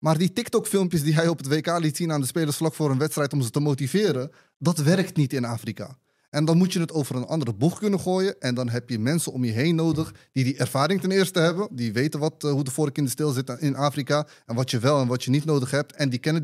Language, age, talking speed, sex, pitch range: Dutch, 30-49, 285 wpm, male, 125-155 Hz